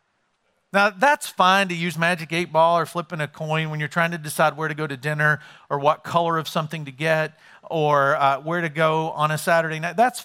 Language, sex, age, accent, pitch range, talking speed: English, male, 40-59, American, 135-170 Hz, 230 wpm